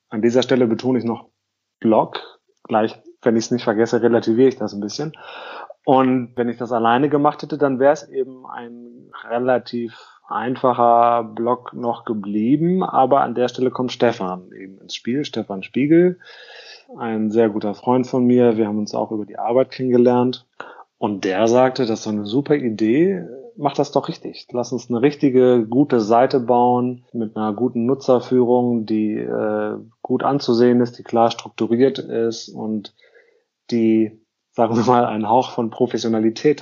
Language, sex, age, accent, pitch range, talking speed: German, male, 30-49, German, 115-135 Hz, 165 wpm